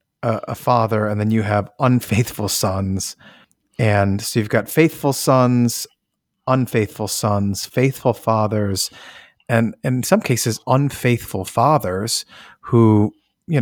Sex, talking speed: male, 115 wpm